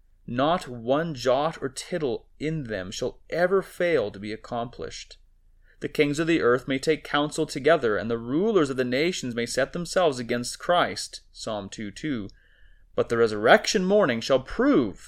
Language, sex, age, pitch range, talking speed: English, male, 30-49, 115-160 Hz, 165 wpm